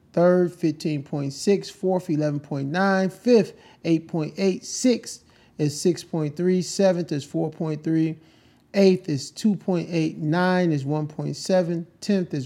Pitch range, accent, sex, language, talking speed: 150-195 Hz, American, male, English, 95 wpm